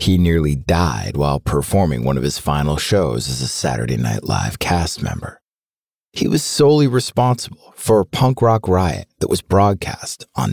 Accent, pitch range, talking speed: American, 70-115 Hz, 170 wpm